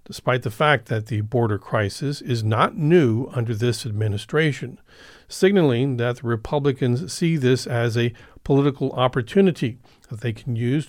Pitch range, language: 115-140 Hz, English